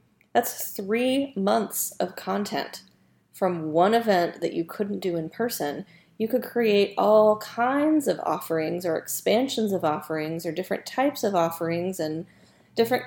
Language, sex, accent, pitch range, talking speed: English, female, American, 170-235 Hz, 145 wpm